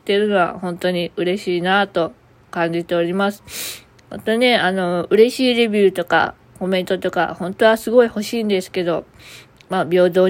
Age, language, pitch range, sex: 20-39, Japanese, 175-225 Hz, female